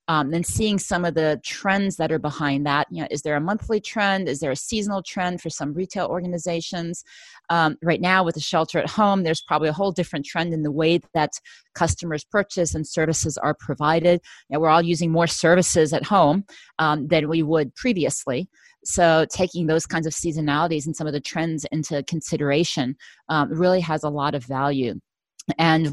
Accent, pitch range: American, 155-180 Hz